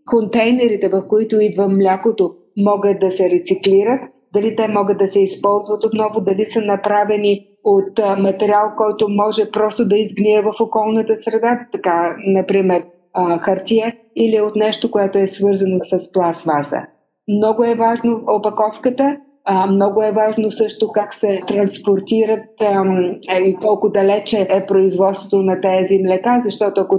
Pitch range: 190-230 Hz